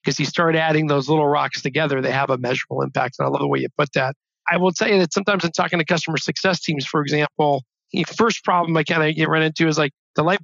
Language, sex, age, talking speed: English, male, 40-59, 275 wpm